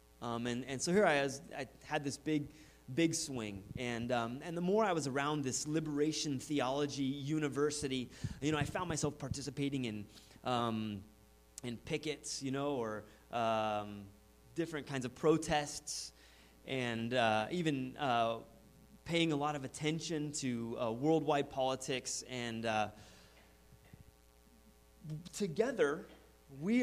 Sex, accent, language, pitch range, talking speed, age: male, American, English, 115-155 Hz, 135 wpm, 30-49